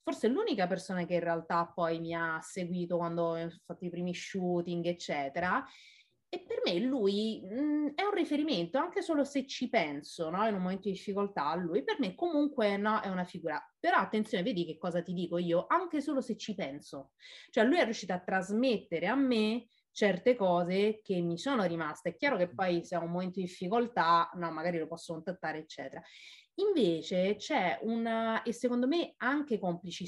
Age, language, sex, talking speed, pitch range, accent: 30-49, Italian, female, 190 wpm, 175-260 Hz, native